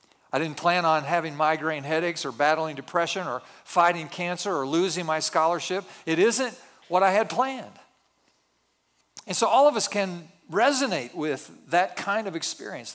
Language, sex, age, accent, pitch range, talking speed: English, male, 50-69, American, 160-200 Hz, 160 wpm